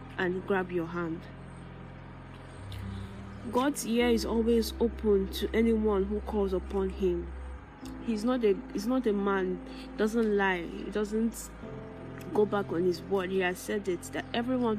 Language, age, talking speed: English, 10-29, 150 wpm